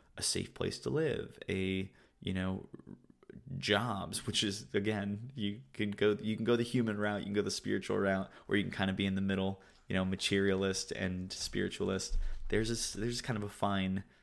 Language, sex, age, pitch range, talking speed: English, male, 20-39, 95-105 Hz, 205 wpm